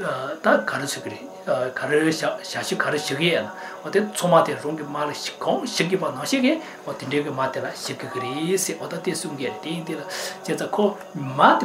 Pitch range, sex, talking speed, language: 150-195 Hz, male, 130 wpm, English